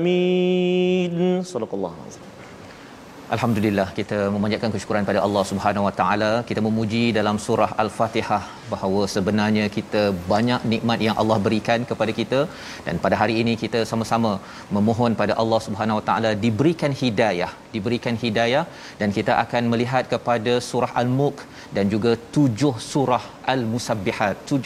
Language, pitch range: Malayalam, 110-130 Hz